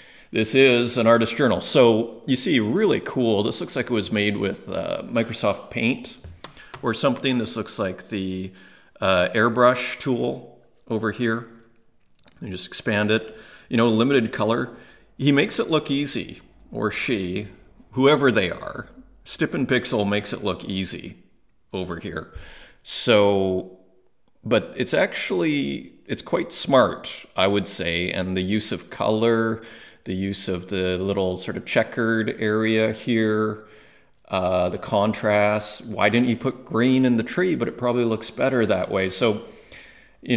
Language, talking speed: English, 155 wpm